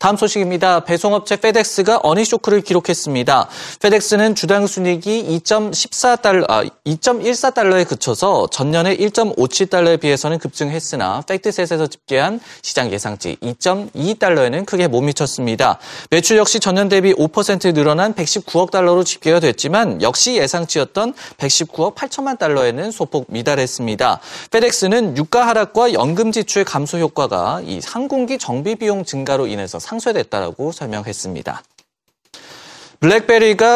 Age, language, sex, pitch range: 30-49, Korean, male, 150-220 Hz